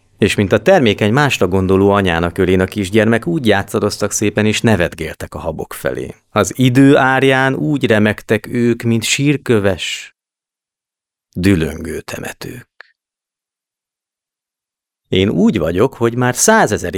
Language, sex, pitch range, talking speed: Hungarian, male, 90-120 Hz, 120 wpm